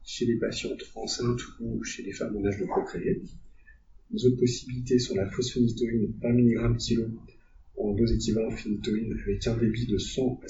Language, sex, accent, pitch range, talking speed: French, male, French, 100-120 Hz, 175 wpm